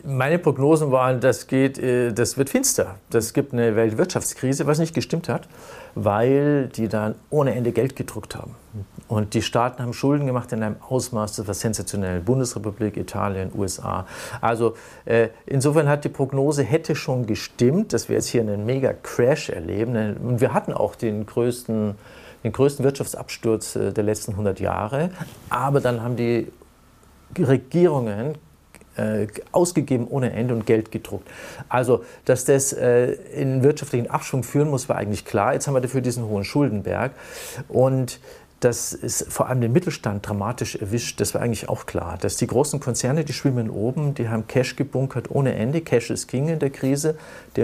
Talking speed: 165 wpm